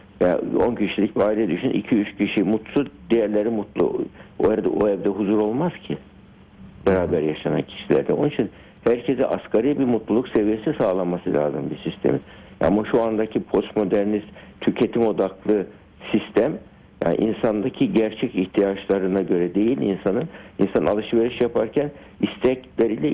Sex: male